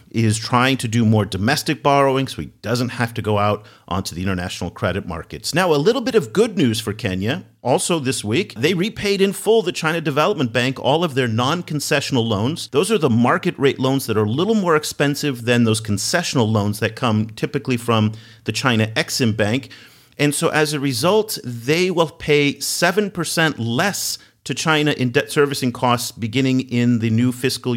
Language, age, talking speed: English, 40-59, 195 wpm